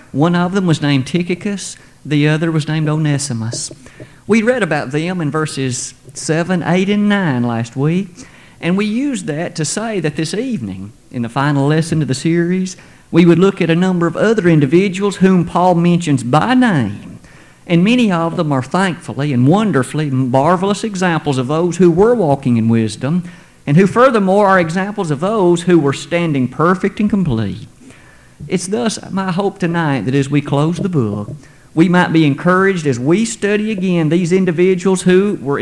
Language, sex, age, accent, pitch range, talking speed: English, male, 50-69, American, 145-185 Hz, 180 wpm